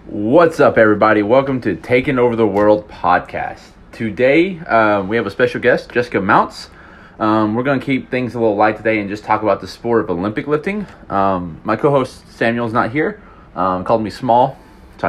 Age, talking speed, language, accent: 30-49, 200 wpm, English, American